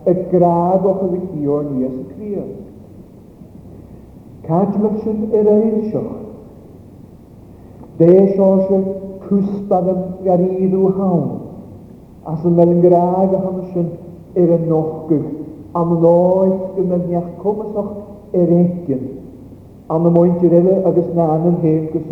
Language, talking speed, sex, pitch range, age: English, 70 wpm, male, 145-185 Hz, 50-69